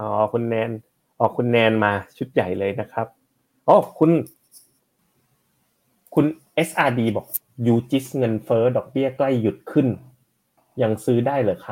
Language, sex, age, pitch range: Thai, male, 30-49, 110-140 Hz